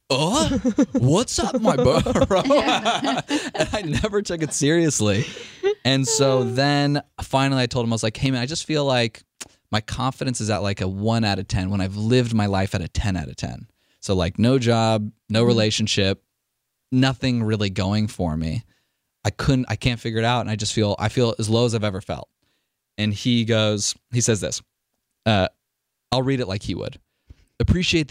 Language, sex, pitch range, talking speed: English, male, 100-125 Hz, 195 wpm